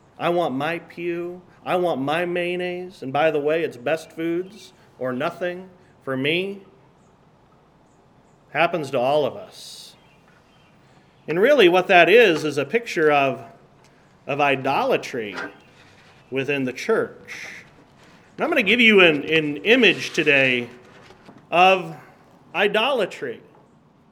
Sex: male